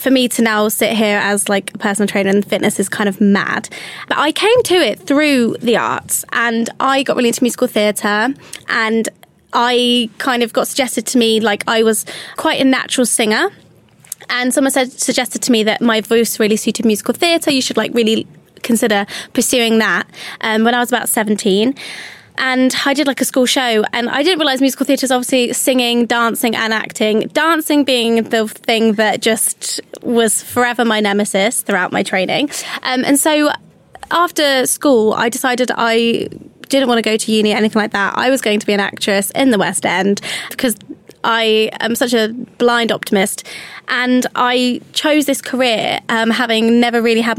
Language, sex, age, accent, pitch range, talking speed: English, female, 20-39, British, 215-255 Hz, 190 wpm